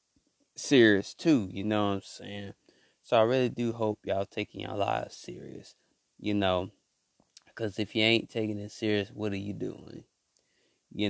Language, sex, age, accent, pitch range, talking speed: English, male, 20-39, American, 105-130 Hz, 175 wpm